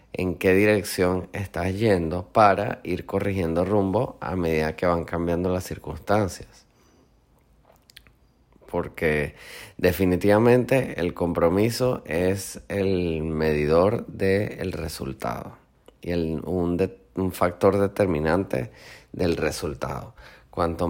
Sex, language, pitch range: male, Spanish, 85-105 Hz